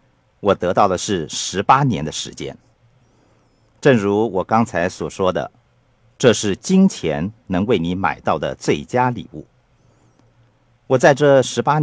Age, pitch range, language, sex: 50-69, 100-130 Hz, Chinese, male